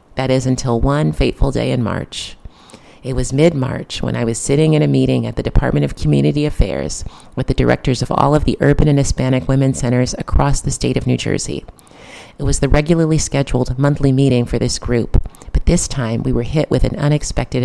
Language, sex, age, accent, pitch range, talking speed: English, female, 30-49, American, 120-145 Hz, 205 wpm